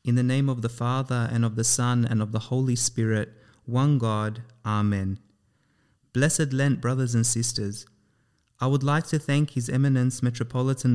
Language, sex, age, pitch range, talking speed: English, male, 30-49, 115-145 Hz, 170 wpm